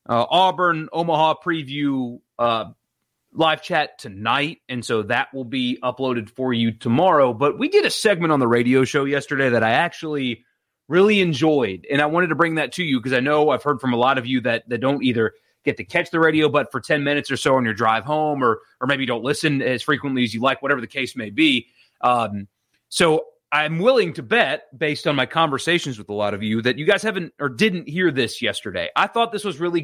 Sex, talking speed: male, 225 wpm